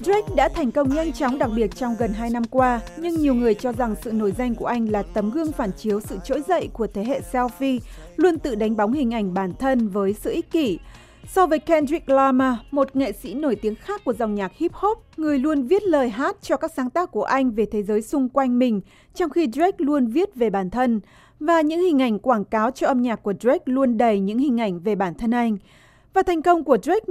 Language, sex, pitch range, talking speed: Vietnamese, female, 220-290 Hz, 250 wpm